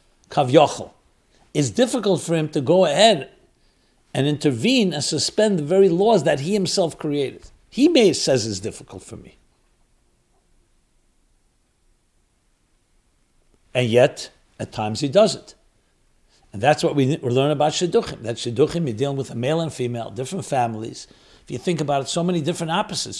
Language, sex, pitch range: English, male, 130-175 Hz